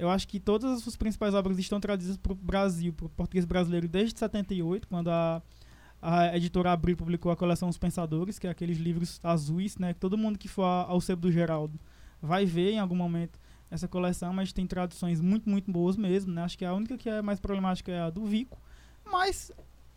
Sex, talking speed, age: male, 220 wpm, 20-39